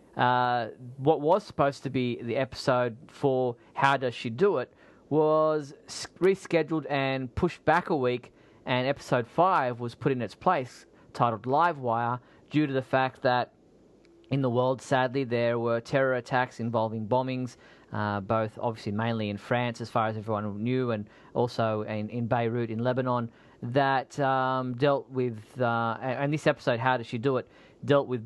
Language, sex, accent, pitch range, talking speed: English, male, Australian, 115-135 Hz, 170 wpm